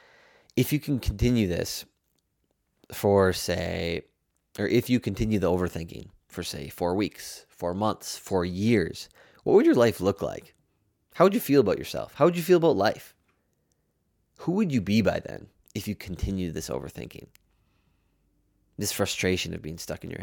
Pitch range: 85-105 Hz